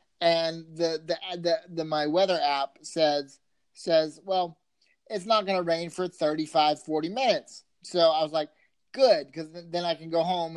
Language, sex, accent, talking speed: English, male, American, 180 wpm